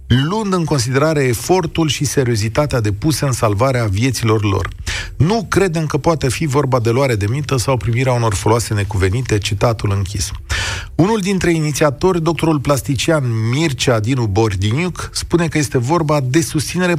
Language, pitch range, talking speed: Romanian, 110-160 Hz, 150 wpm